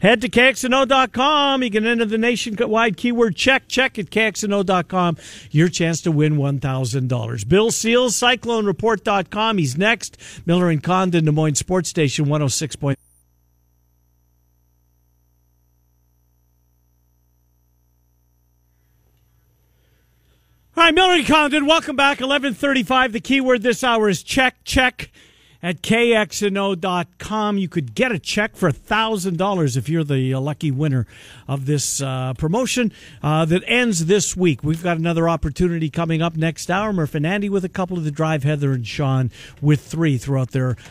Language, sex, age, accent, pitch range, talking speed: English, male, 50-69, American, 135-220 Hz, 135 wpm